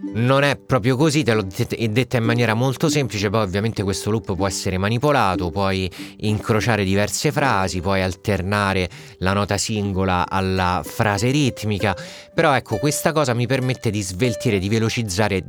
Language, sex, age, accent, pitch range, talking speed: Italian, male, 30-49, native, 95-120 Hz, 165 wpm